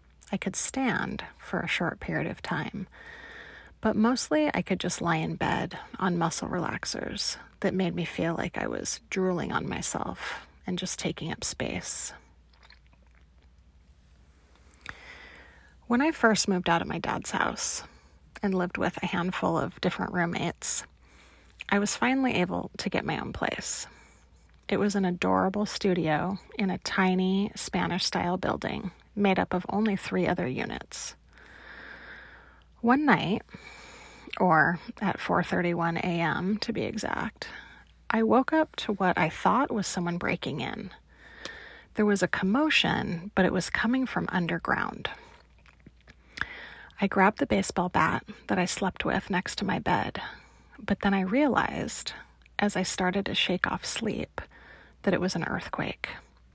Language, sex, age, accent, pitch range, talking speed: English, female, 30-49, American, 165-215 Hz, 145 wpm